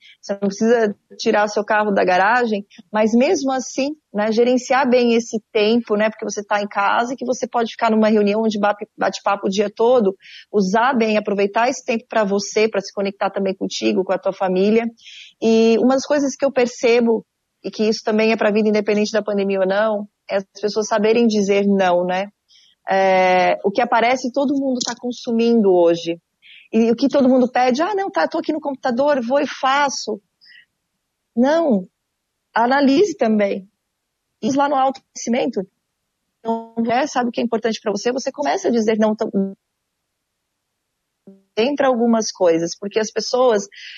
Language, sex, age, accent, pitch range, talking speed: Portuguese, female, 30-49, Brazilian, 205-245 Hz, 180 wpm